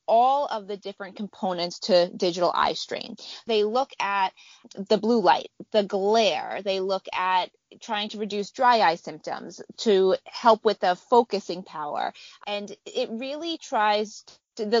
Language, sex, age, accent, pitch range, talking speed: English, female, 20-39, American, 185-230 Hz, 150 wpm